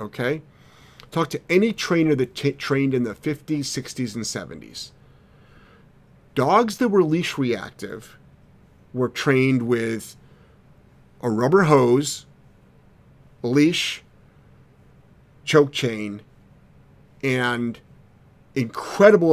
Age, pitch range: 40-59, 120-150 Hz